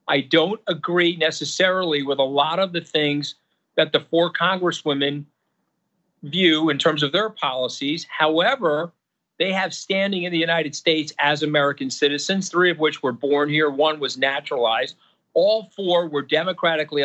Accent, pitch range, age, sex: American, 150-180 Hz, 50-69, male